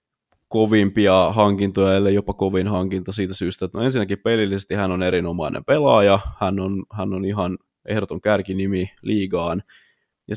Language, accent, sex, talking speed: Finnish, native, male, 145 wpm